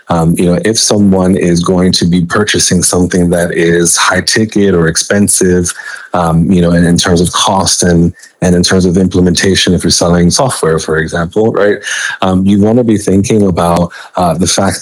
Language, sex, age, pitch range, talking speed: English, male, 30-49, 90-95 Hz, 195 wpm